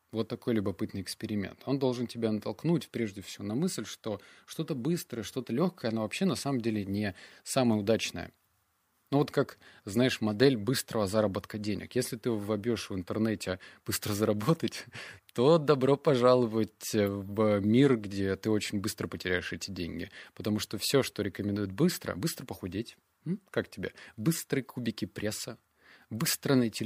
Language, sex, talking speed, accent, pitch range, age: Russian, male, 150 wpm, native, 100-125 Hz, 20-39